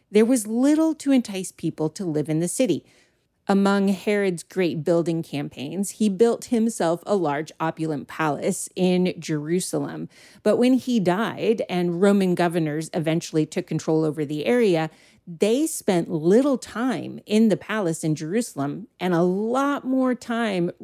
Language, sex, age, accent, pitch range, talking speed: English, female, 30-49, American, 165-230 Hz, 150 wpm